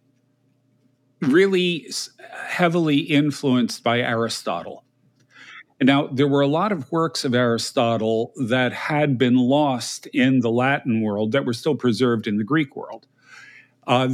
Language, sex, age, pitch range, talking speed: English, male, 50-69, 115-135 Hz, 135 wpm